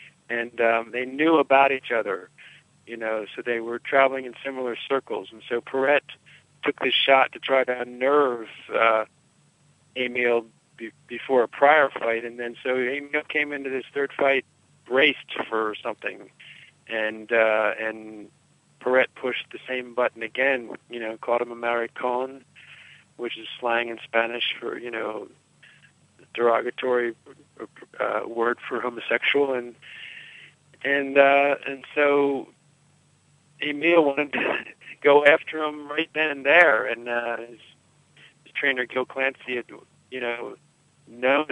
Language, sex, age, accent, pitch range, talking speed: English, male, 50-69, American, 120-140 Hz, 145 wpm